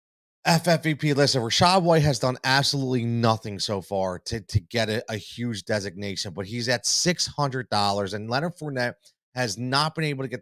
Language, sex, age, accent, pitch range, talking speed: English, male, 30-49, American, 110-140 Hz, 180 wpm